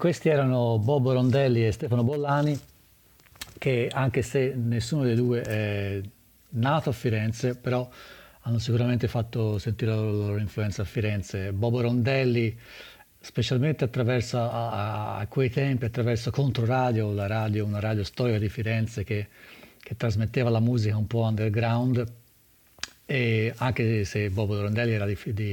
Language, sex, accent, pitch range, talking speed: Dutch, male, Italian, 105-125 Hz, 135 wpm